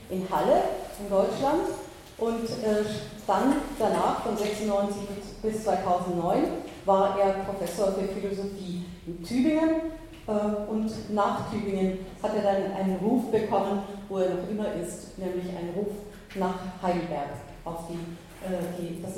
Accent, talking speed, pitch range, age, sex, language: German, 130 wpm, 185-215 Hz, 40-59, female, German